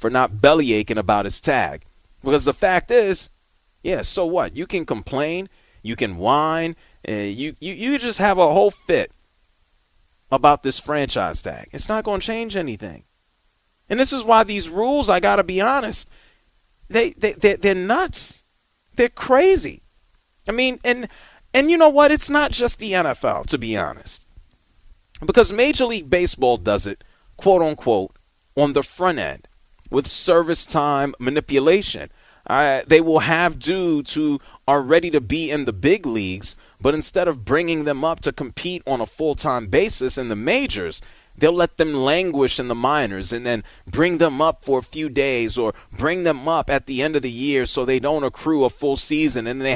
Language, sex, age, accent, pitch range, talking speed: English, male, 40-59, American, 130-195 Hz, 180 wpm